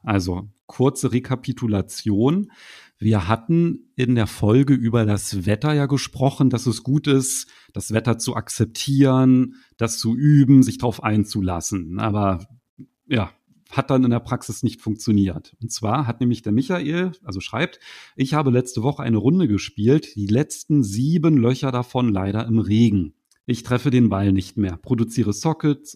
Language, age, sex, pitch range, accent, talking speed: German, 40-59, male, 105-135 Hz, German, 155 wpm